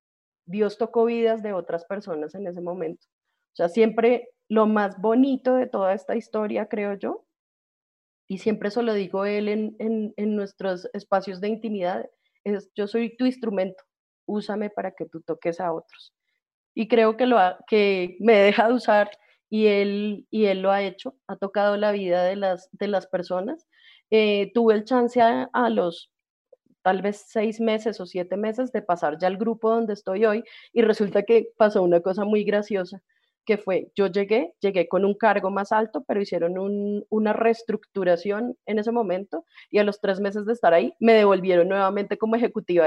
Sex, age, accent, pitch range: female, 30-49, Colombian, 190-230 Hz